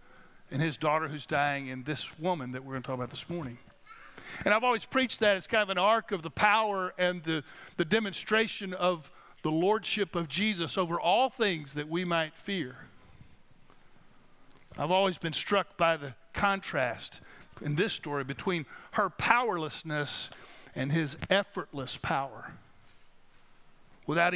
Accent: American